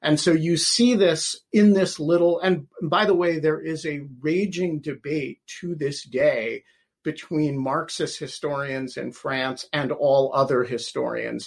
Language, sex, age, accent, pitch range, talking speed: English, male, 50-69, American, 125-160 Hz, 150 wpm